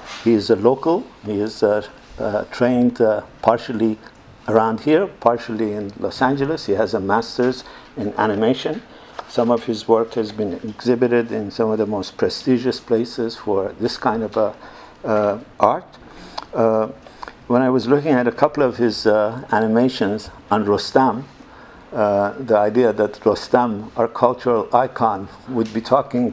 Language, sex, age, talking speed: English, male, 60-79, 155 wpm